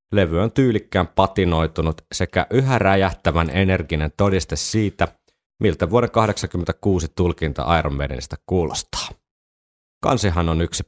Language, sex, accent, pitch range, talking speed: Finnish, male, native, 80-95 Hz, 105 wpm